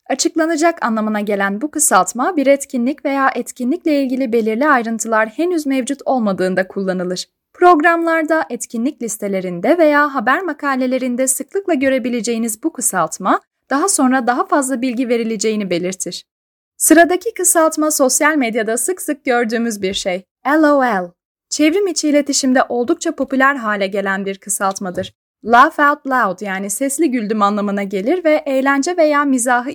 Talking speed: 130 wpm